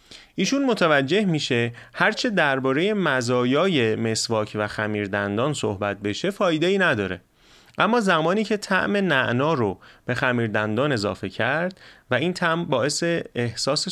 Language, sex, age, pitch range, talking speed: Persian, male, 30-49, 105-165 Hz, 125 wpm